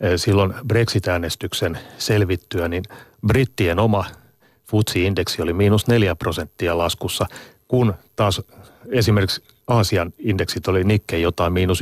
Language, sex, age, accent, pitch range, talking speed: Finnish, male, 30-49, native, 85-110 Hz, 105 wpm